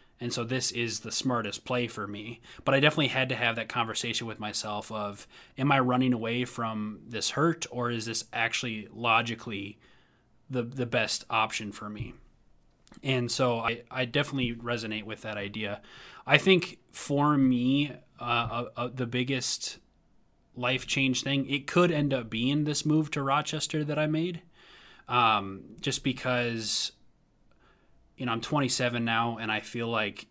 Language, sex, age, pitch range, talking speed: English, male, 20-39, 110-130 Hz, 160 wpm